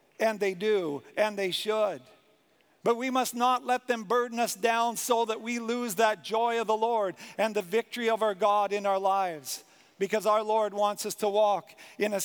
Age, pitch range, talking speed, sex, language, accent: 50-69, 210-245 Hz, 205 wpm, male, English, American